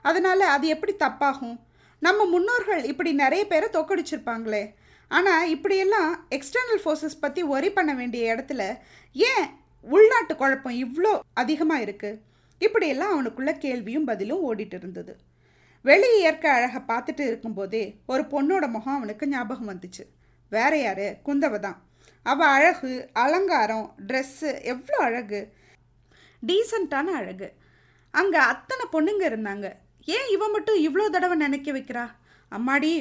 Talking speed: 115 wpm